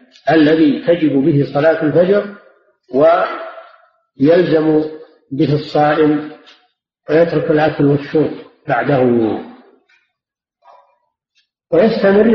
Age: 50-69